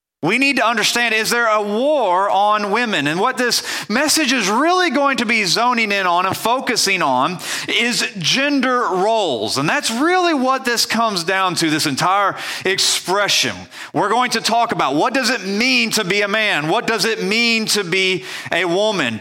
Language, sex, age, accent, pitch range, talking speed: English, male, 40-59, American, 185-240 Hz, 185 wpm